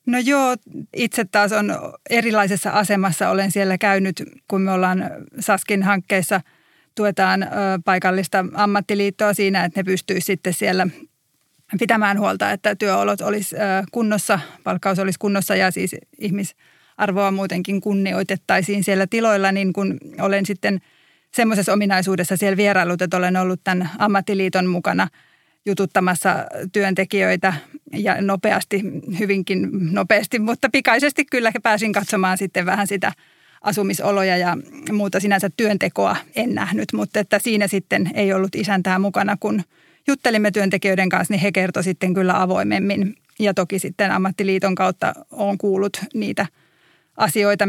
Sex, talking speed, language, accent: female, 130 wpm, Finnish, native